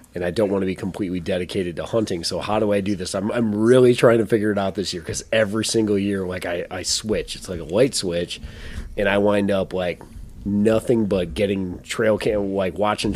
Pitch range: 90-105 Hz